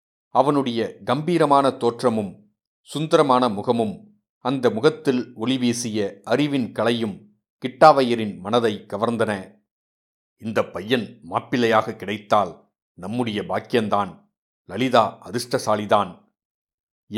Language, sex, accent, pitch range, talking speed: Tamil, male, native, 110-130 Hz, 75 wpm